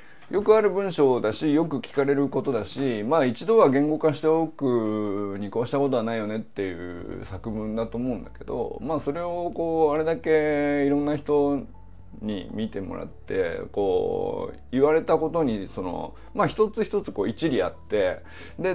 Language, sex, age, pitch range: Japanese, male, 20-39, 110-175 Hz